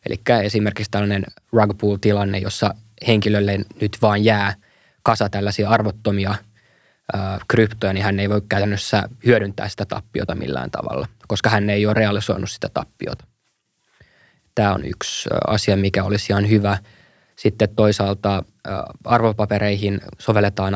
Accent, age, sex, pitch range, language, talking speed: native, 20-39, male, 100-110 Hz, Finnish, 125 wpm